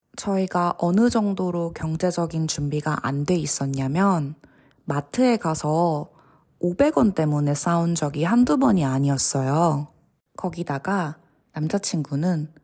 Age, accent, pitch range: 20-39, native, 150-200 Hz